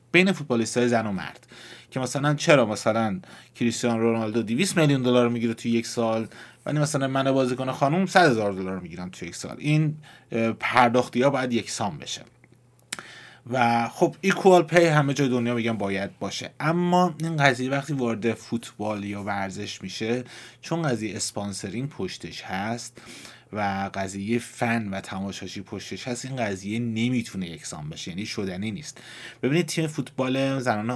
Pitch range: 105-130 Hz